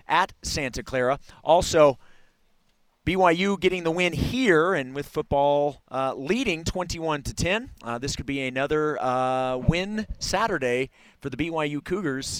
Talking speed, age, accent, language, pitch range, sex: 140 wpm, 40-59, American, English, 125-170 Hz, male